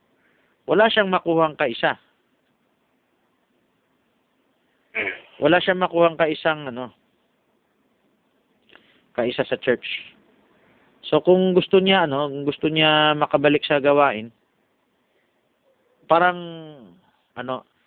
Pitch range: 130-175 Hz